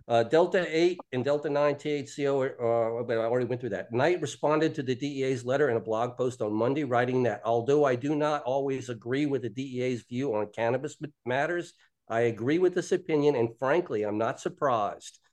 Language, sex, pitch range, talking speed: English, male, 115-135 Hz, 200 wpm